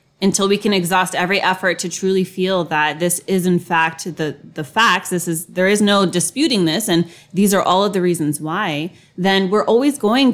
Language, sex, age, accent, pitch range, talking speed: English, female, 20-39, American, 170-195 Hz, 210 wpm